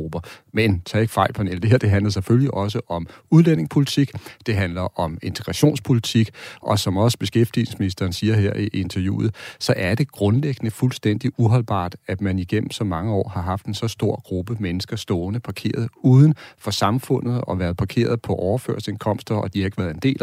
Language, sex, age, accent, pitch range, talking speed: Danish, male, 40-59, native, 95-115 Hz, 180 wpm